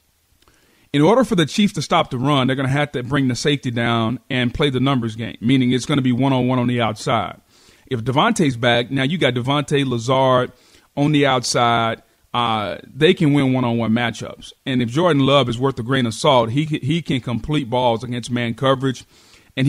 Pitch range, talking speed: 125-145 Hz, 205 wpm